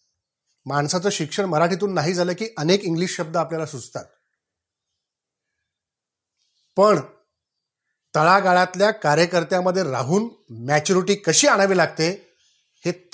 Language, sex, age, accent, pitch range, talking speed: English, male, 40-59, Indian, 165-240 Hz, 125 wpm